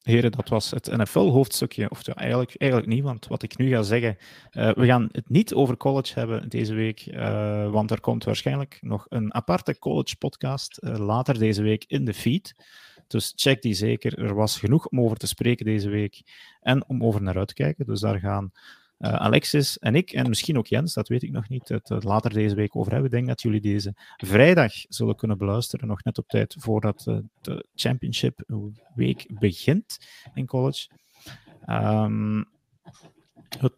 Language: Dutch